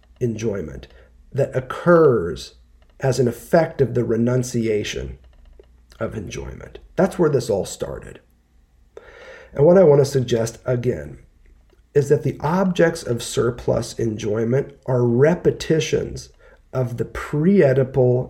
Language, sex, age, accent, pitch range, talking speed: English, male, 40-59, American, 85-145 Hz, 115 wpm